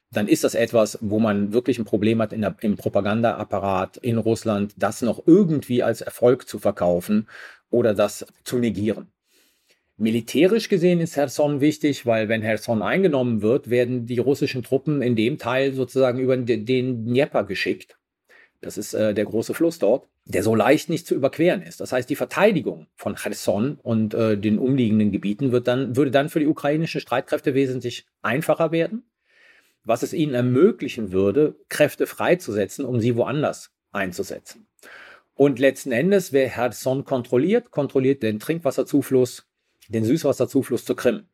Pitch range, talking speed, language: 110-145 Hz, 160 wpm, German